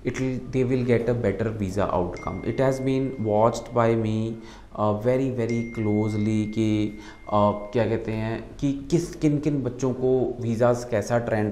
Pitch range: 110-140 Hz